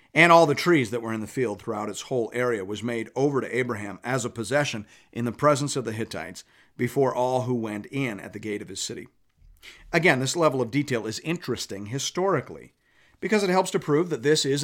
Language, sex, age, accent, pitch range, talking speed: English, male, 50-69, American, 110-150 Hz, 220 wpm